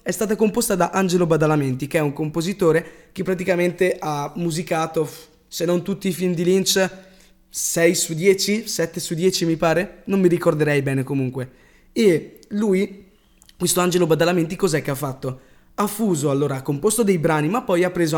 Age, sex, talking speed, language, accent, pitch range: 20-39, male, 180 wpm, Italian, native, 150-185 Hz